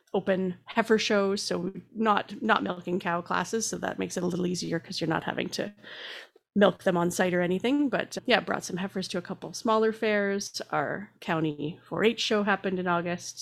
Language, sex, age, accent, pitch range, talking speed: English, female, 30-49, American, 170-215 Hz, 200 wpm